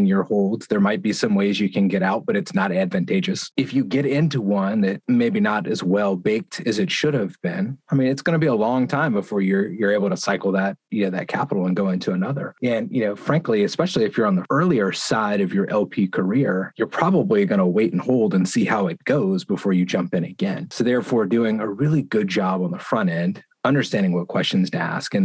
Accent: American